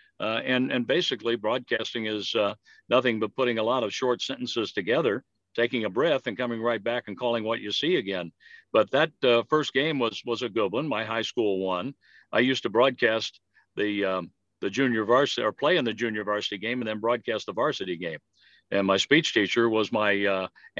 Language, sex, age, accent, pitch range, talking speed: English, male, 60-79, American, 105-120 Hz, 210 wpm